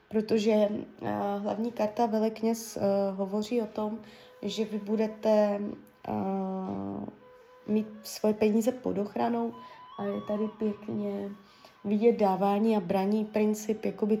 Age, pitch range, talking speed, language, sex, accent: 20-39, 205-230 Hz, 115 wpm, Czech, female, native